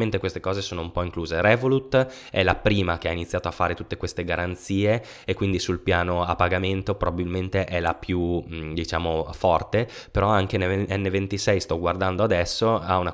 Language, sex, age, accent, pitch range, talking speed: Italian, male, 20-39, native, 80-100 Hz, 175 wpm